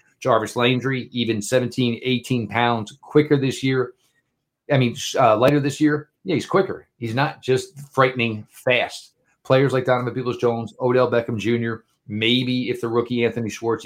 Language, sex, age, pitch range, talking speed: English, male, 40-59, 110-125 Hz, 160 wpm